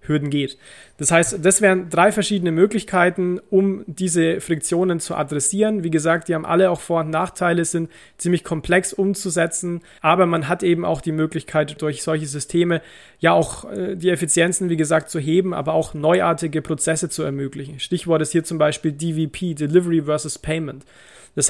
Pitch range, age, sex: 150-175 Hz, 30-49, male